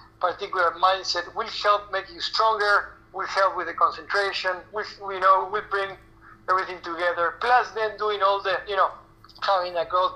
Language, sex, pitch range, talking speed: English, male, 165-195 Hz, 170 wpm